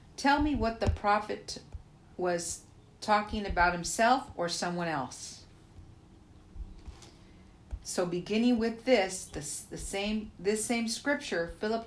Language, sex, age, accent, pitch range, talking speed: English, female, 50-69, American, 150-215 Hz, 115 wpm